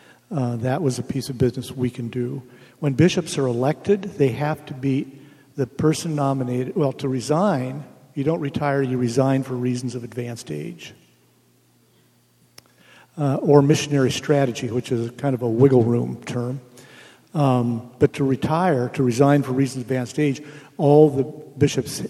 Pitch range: 125-150 Hz